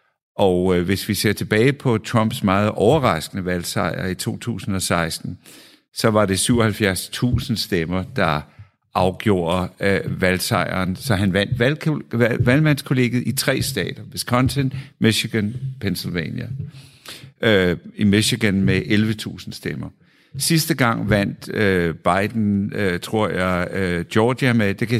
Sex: male